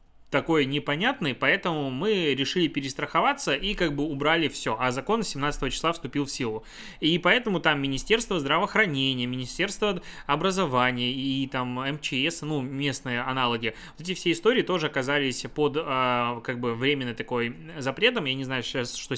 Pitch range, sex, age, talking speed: 135-160 Hz, male, 20-39, 145 wpm